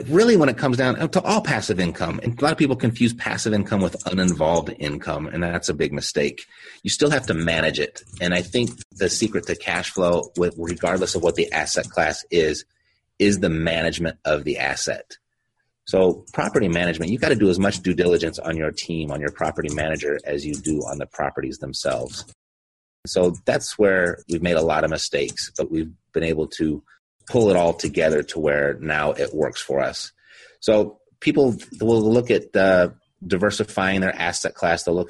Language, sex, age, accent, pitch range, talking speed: English, male, 30-49, American, 80-100 Hz, 195 wpm